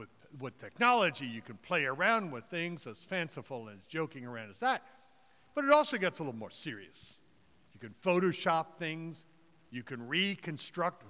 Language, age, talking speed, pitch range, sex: English, 60-79, 170 wpm, 145-210 Hz, male